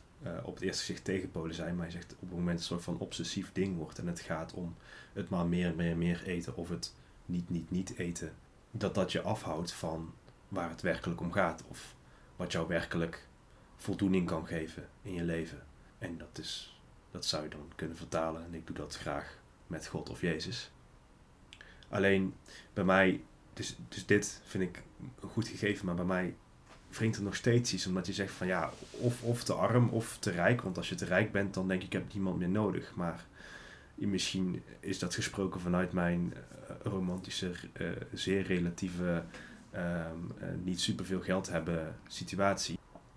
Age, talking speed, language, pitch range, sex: 30-49, 190 wpm, Dutch, 85-95 Hz, male